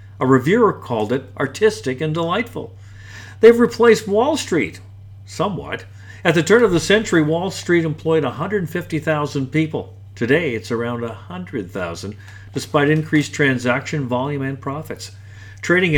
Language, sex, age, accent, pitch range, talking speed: English, male, 50-69, American, 105-155 Hz, 130 wpm